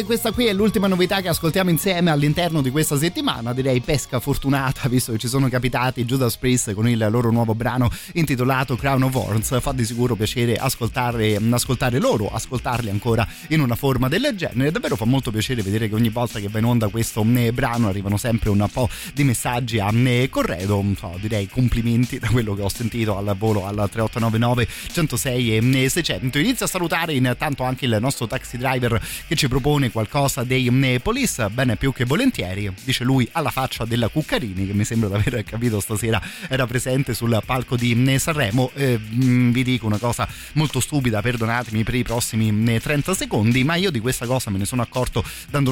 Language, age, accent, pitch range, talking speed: Italian, 30-49, native, 110-135 Hz, 190 wpm